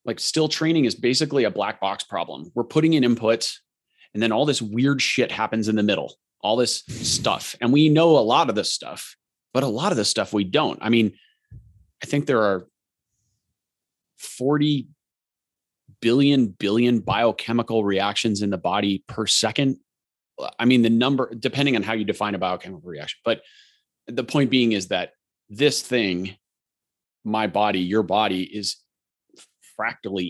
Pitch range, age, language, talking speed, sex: 105-130 Hz, 30-49, English, 165 wpm, male